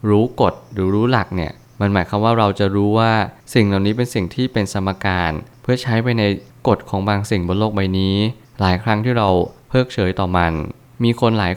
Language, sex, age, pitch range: Thai, male, 20-39, 95-115 Hz